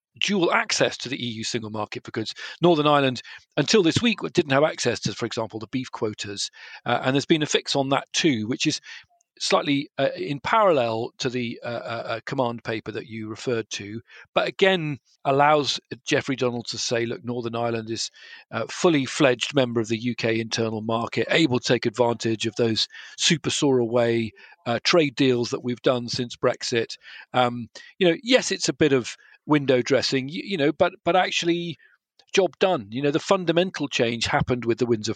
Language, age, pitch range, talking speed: English, 40-59, 115-145 Hz, 190 wpm